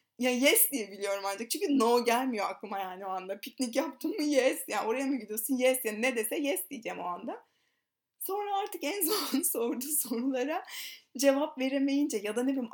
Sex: female